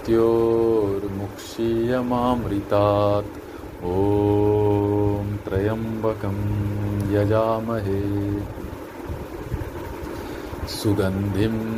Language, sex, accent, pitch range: Hindi, male, native, 100-115 Hz